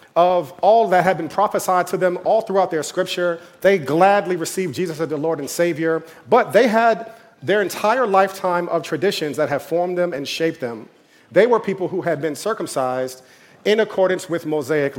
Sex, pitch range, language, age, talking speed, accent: male, 150-190 Hz, English, 40-59, 190 wpm, American